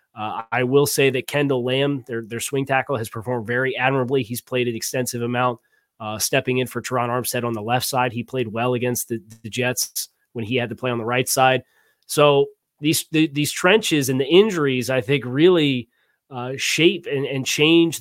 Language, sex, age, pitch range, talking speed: English, male, 30-49, 120-145 Hz, 205 wpm